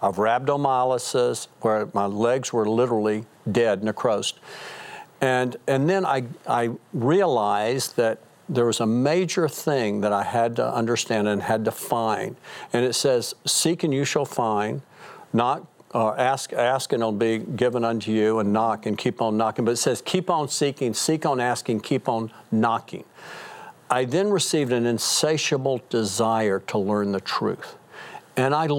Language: English